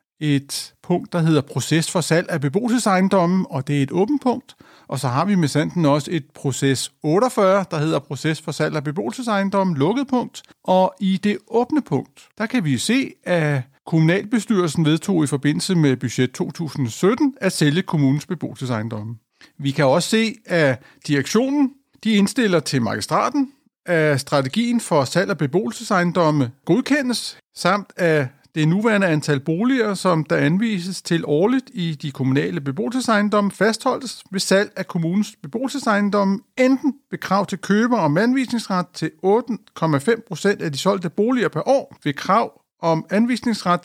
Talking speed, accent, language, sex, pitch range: 155 wpm, native, Danish, male, 150-210 Hz